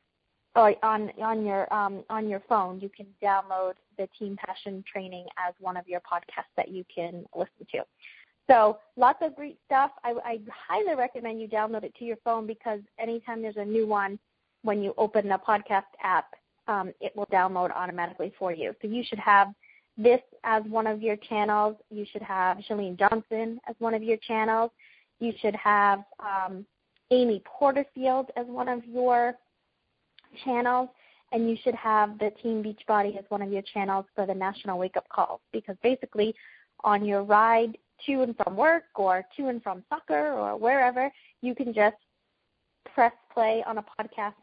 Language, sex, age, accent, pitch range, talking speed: English, female, 20-39, American, 195-230 Hz, 175 wpm